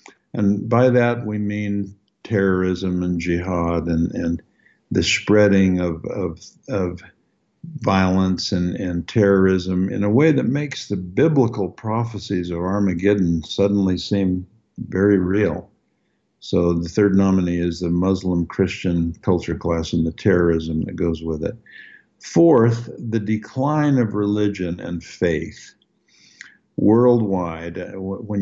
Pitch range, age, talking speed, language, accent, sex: 85-105 Hz, 60-79, 120 wpm, English, American, male